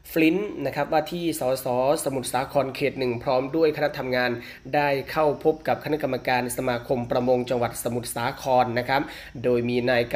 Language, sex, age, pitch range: Thai, male, 20-39, 120-135 Hz